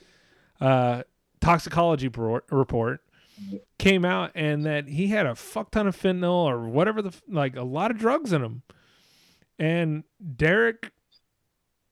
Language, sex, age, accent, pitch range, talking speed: English, male, 30-49, American, 130-170 Hz, 130 wpm